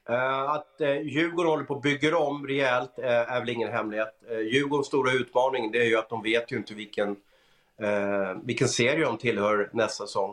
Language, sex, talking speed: Swedish, male, 205 wpm